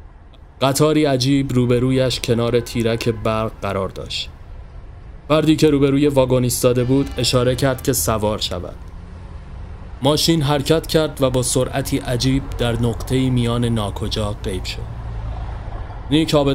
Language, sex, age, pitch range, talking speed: Persian, male, 30-49, 90-135 Hz, 120 wpm